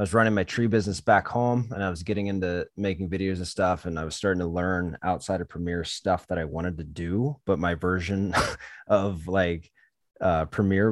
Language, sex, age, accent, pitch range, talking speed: English, male, 20-39, American, 80-100 Hz, 215 wpm